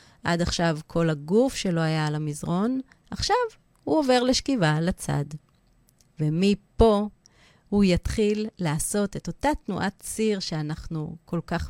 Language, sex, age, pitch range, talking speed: Hebrew, female, 30-49, 155-200 Hz, 130 wpm